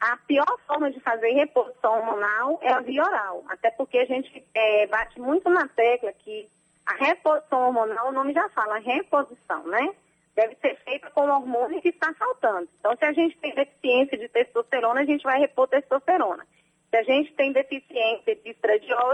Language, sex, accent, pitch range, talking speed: Portuguese, female, Brazilian, 230-295 Hz, 180 wpm